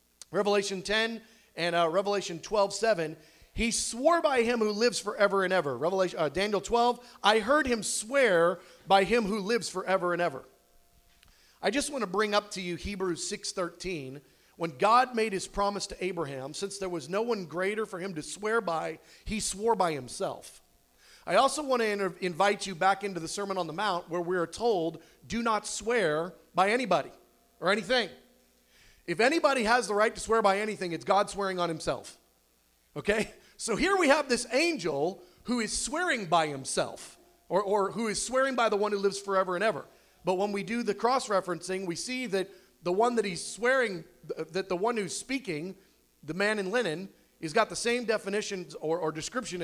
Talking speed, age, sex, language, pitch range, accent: 190 wpm, 40-59, male, English, 180-230 Hz, American